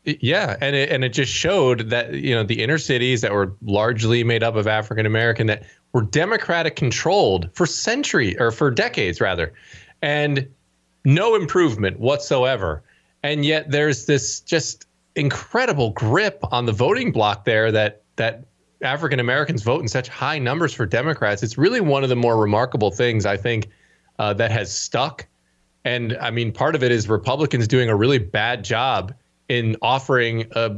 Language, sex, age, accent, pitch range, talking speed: English, male, 20-39, American, 115-155 Hz, 165 wpm